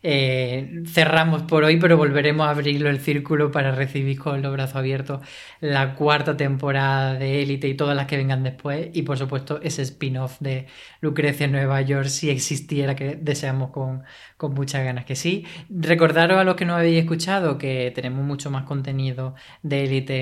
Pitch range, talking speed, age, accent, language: 135-155 Hz, 180 wpm, 20-39, Spanish, Spanish